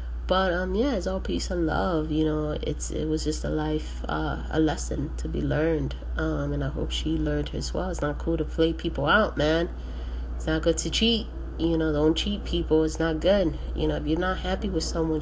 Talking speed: 235 wpm